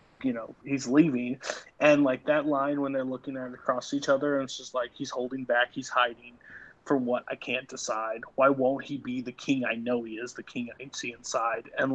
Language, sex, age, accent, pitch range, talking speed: English, male, 30-49, American, 125-150 Hz, 225 wpm